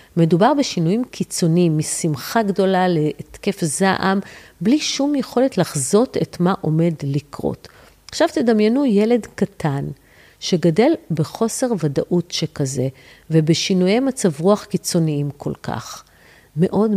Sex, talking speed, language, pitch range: female, 105 wpm, Hebrew, 170-235 Hz